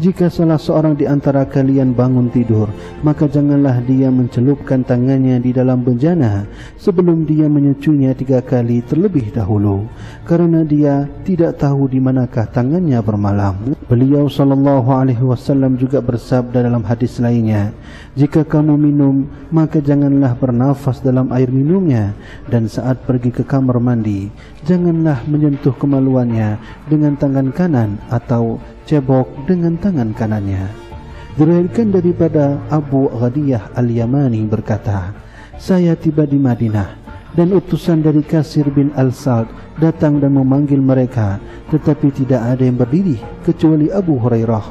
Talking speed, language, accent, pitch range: 130 wpm, Indonesian, native, 120-150 Hz